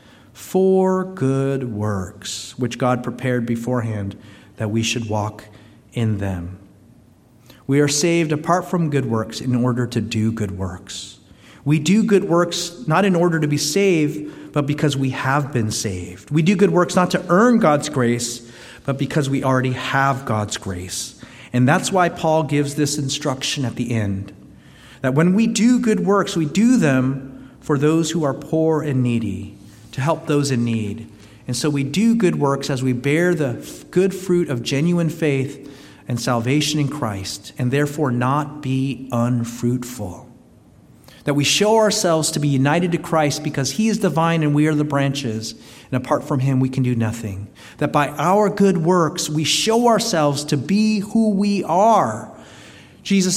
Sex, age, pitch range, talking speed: male, 40-59, 125-180 Hz, 175 wpm